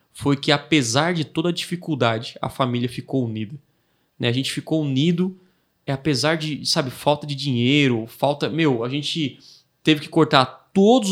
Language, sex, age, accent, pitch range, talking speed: Portuguese, male, 20-39, Brazilian, 135-165 Hz, 165 wpm